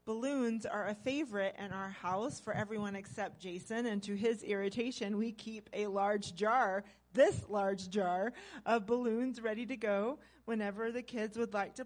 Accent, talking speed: American, 170 wpm